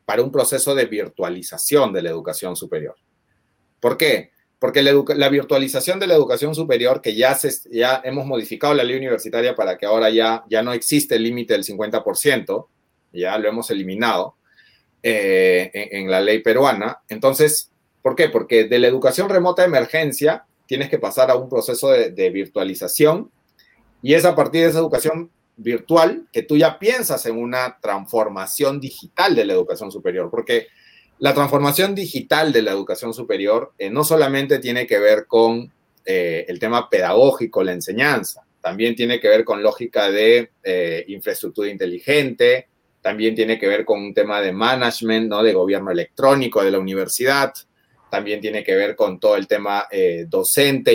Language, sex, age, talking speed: Spanish, male, 30-49, 170 wpm